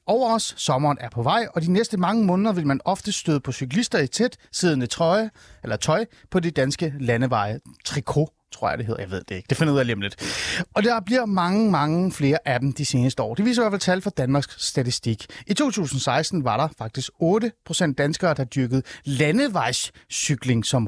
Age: 30-49